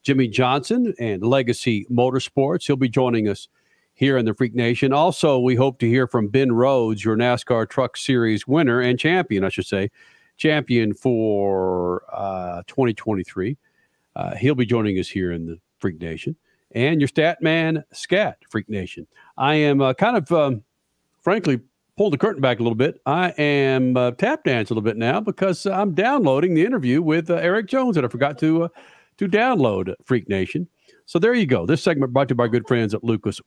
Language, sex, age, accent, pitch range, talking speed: English, male, 50-69, American, 120-170 Hz, 195 wpm